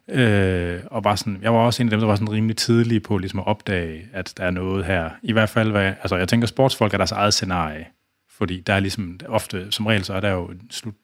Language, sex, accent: Danish, male, native